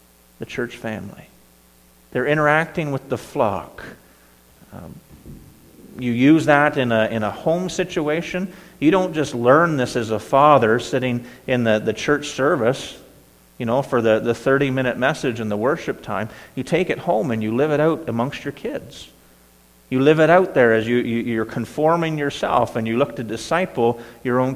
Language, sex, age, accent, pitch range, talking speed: English, male, 40-59, American, 105-145 Hz, 175 wpm